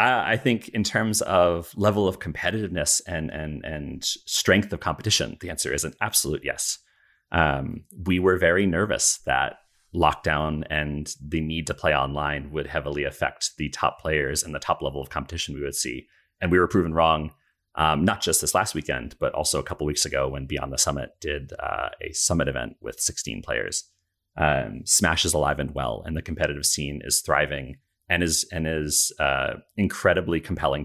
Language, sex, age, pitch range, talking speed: English, male, 30-49, 75-95 Hz, 185 wpm